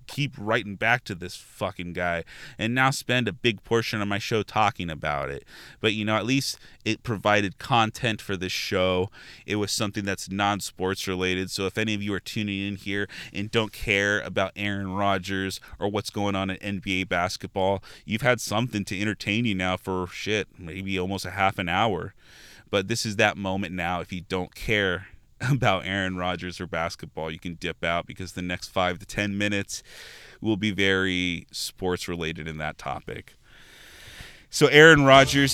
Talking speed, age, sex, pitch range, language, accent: 185 wpm, 20-39, male, 95-110 Hz, English, American